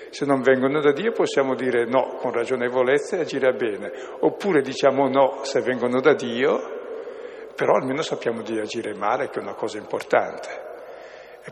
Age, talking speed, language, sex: 60-79, 165 wpm, Italian, male